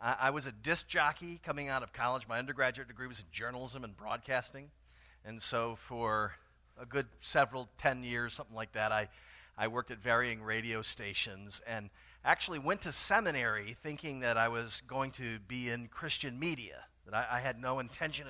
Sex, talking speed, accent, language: male, 185 wpm, American, English